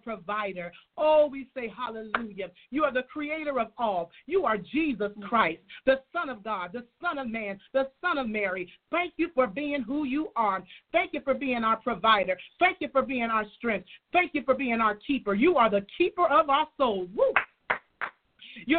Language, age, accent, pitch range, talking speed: English, 40-59, American, 225-305 Hz, 190 wpm